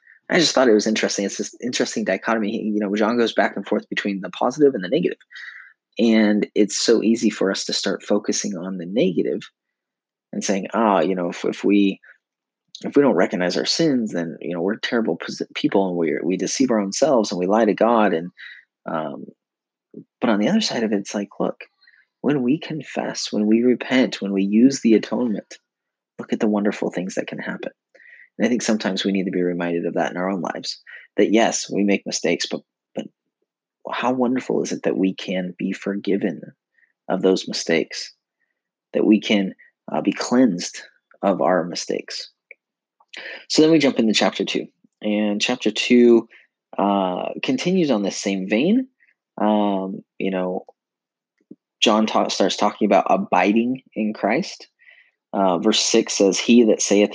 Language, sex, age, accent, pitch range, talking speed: English, male, 30-49, American, 95-115 Hz, 185 wpm